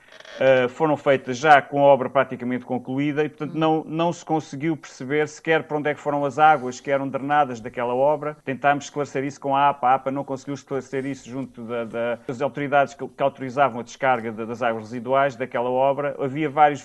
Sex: male